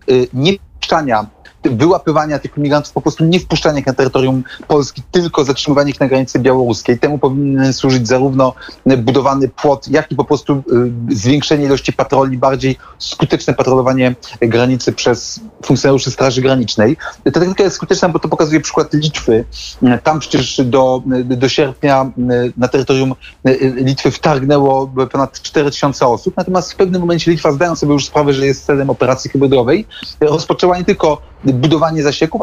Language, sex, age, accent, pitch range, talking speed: Polish, male, 30-49, native, 130-165 Hz, 150 wpm